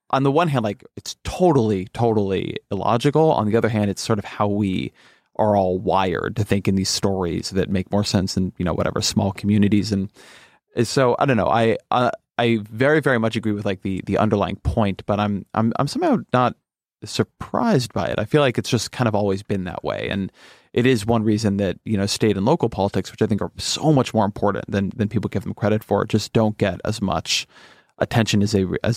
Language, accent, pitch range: English, American, 100-115 Hz